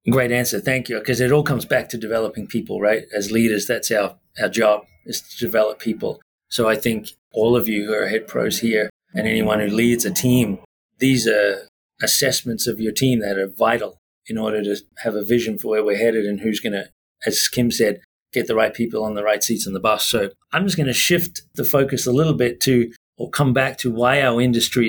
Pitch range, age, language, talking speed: 110-125 Hz, 40-59, English, 230 wpm